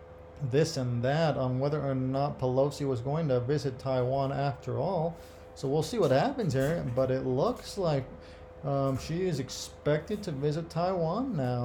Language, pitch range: English, 120-150 Hz